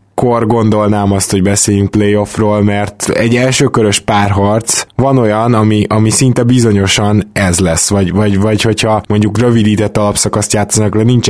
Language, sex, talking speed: Hungarian, male, 150 wpm